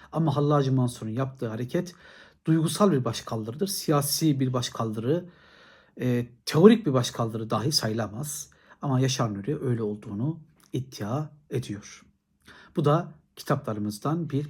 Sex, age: male, 60-79